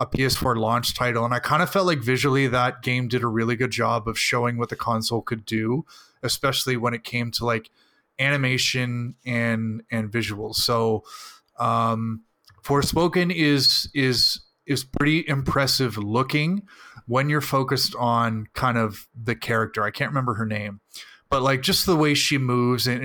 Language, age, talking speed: English, 30-49, 170 wpm